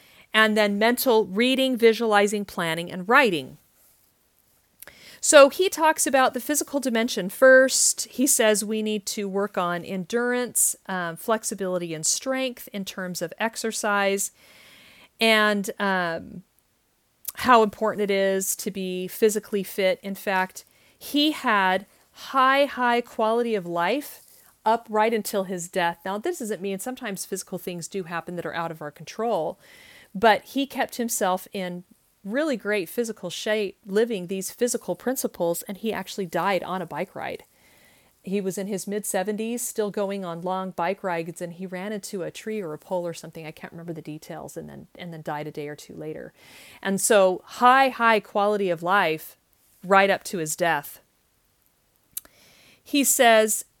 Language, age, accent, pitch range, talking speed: English, 40-59, American, 185-230 Hz, 160 wpm